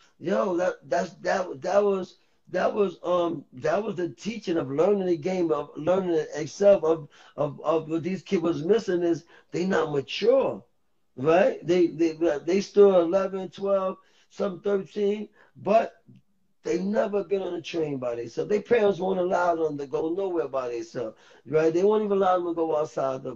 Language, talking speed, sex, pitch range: English, 180 wpm, male, 160-200 Hz